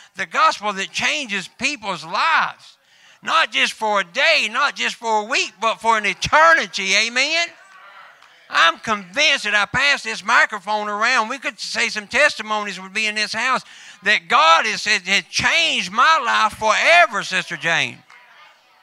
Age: 60-79